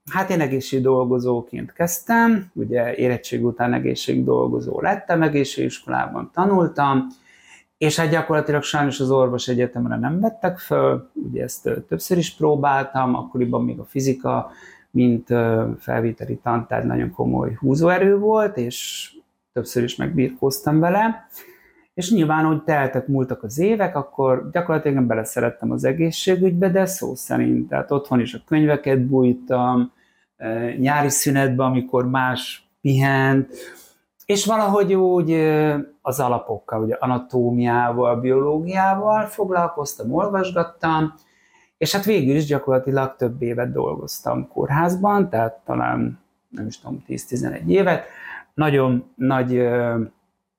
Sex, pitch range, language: male, 120-165 Hz, Hungarian